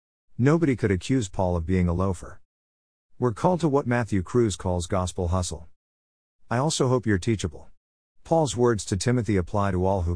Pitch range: 85-120 Hz